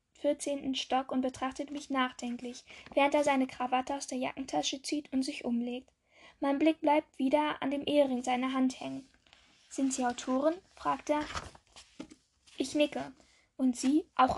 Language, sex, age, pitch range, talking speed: German, female, 10-29, 255-290 Hz, 155 wpm